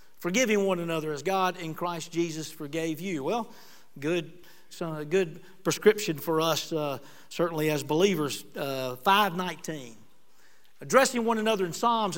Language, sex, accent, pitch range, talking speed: English, male, American, 165-215 Hz, 135 wpm